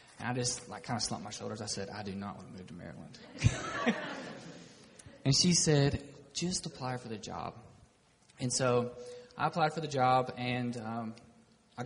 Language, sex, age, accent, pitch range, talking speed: English, male, 20-39, American, 115-130 Hz, 180 wpm